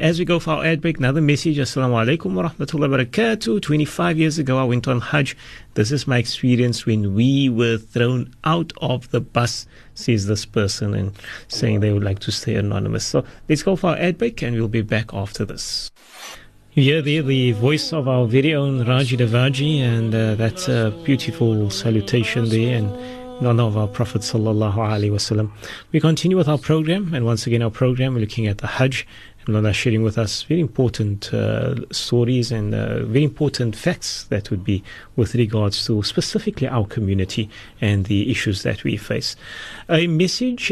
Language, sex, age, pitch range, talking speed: English, male, 30-49, 110-145 Hz, 185 wpm